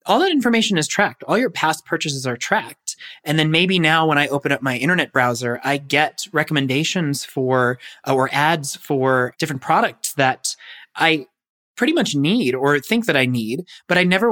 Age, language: 20-39, English